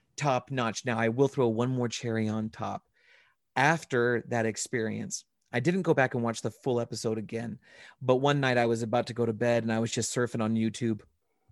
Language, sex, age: English, male, 30-49